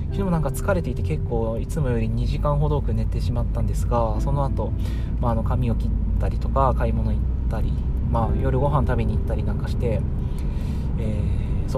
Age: 20-39